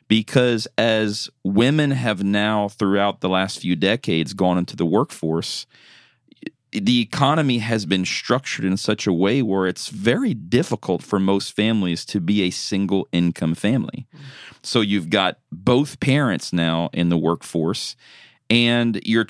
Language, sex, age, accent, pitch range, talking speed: English, male, 40-59, American, 95-120 Hz, 145 wpm